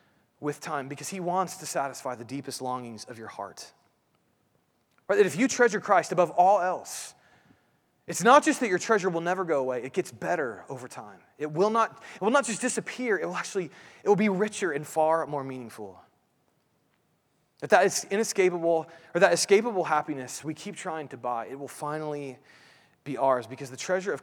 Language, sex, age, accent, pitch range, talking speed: English, male, 30-49, American, 140-195 Hz, 195 wpm